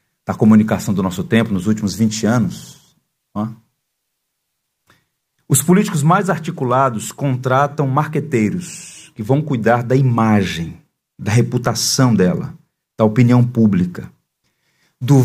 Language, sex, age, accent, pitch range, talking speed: Portuguese, male, 50-69, Brazilian, 110-150 Hz, 110 wpm